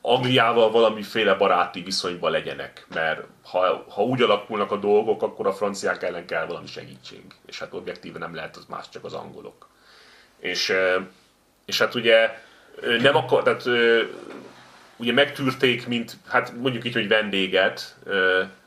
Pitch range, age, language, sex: 95-140 Hz, 30-49, Hungarian, male